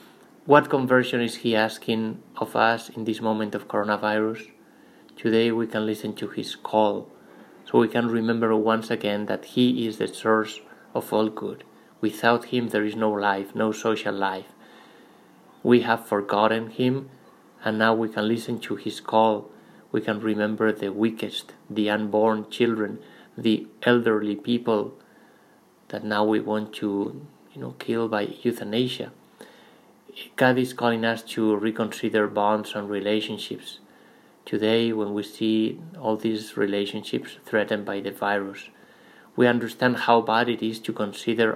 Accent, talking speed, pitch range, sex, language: Spanish, 150 wpm, 105-115 Hz, male, English